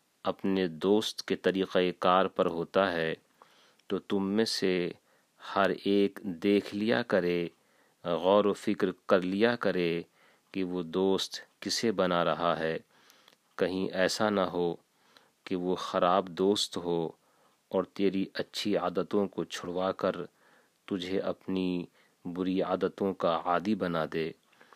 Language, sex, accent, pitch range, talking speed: English, male, Indian, 85-95 Hz, 125 wpm